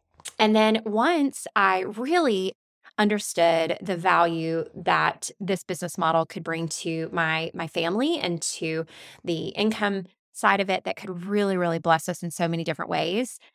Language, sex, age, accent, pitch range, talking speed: English, female, 20-39, American, 170-220 Hz, 160 wpm